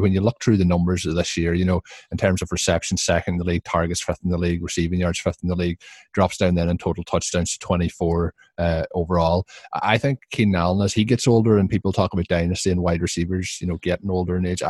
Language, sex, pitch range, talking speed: English, male, 90-100 Hz, 255 wpm